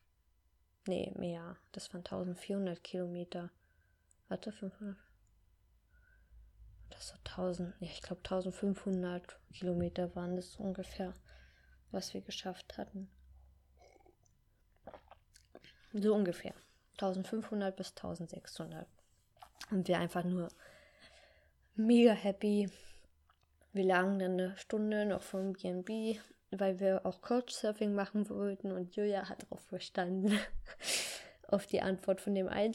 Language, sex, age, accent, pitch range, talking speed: German, female, 20-39, German, 175-200 Hz, 110 wpm